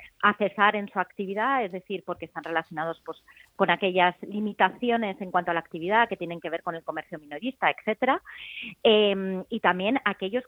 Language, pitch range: Spanish, 180-230 Hz